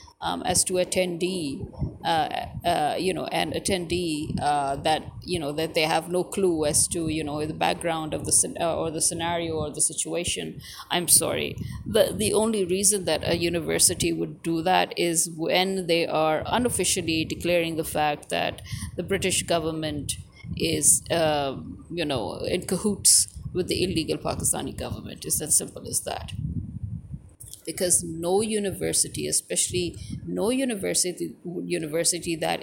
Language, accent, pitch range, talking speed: English, Indian, 155-180 Hz, 150 wpm